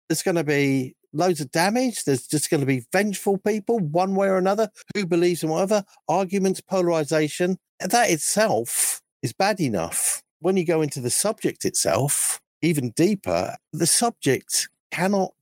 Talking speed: 165 wpm